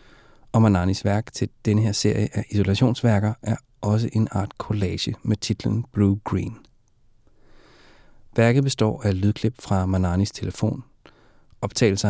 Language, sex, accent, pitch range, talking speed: Danish, male, native, 95-115 Hz, 130 wpm